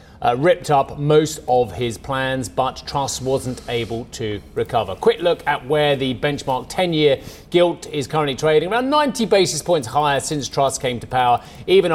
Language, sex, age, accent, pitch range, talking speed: English, male, 40-59, British, 120-160 Hz, 180 wpm